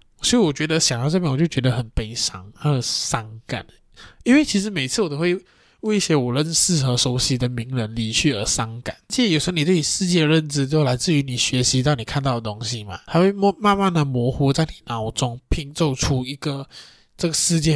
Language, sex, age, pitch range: Chinese, male, 20-39, 125-165 Hz